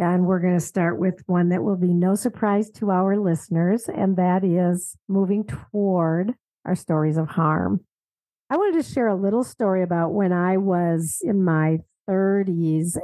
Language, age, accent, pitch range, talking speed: English, 50-69, American, 170-215 Hz, 175 wpm